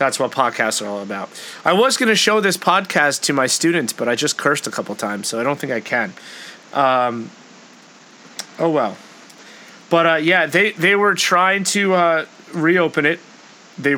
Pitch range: 125-180 Hz